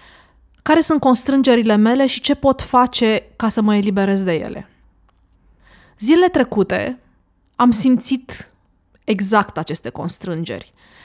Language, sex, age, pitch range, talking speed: Romanian, female, 20-39, 190-240 Hz, 115 wpm